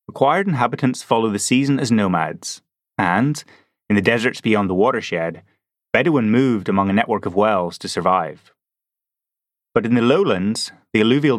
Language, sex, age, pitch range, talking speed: English, male, 30-49, 100-135 Hz, 155 wpm